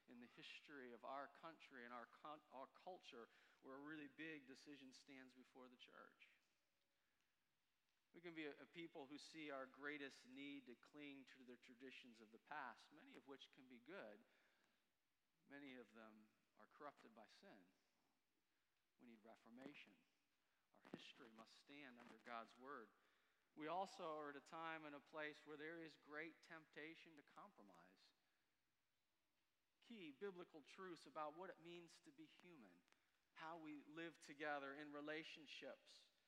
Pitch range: 130-160 Hz